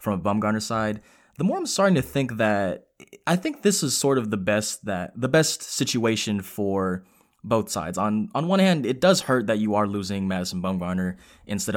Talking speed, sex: 205 wpm, male